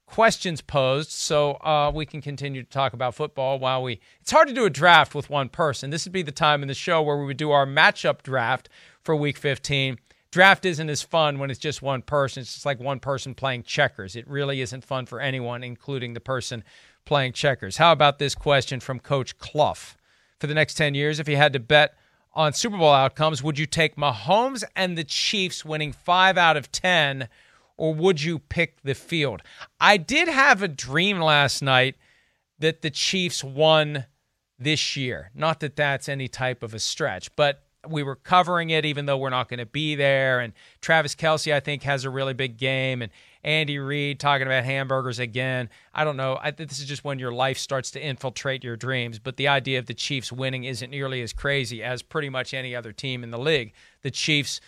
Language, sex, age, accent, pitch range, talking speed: English, male, 40-59, American, 130-155 Hz, 210 wpm